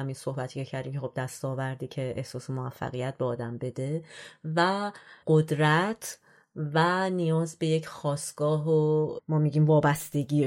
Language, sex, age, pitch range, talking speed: Persian, female, 30-49, 145-170 Hz, 130 wpm